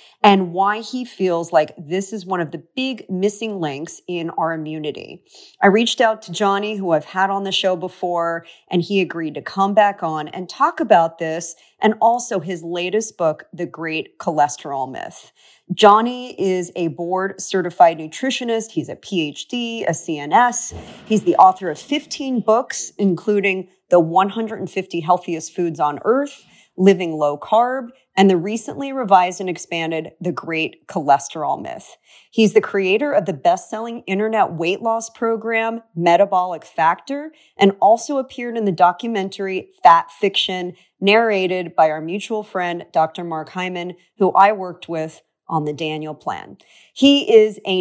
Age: 40-59